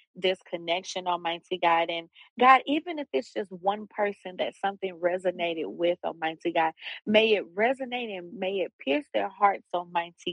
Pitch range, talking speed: 170-205 Hz, 165 wpm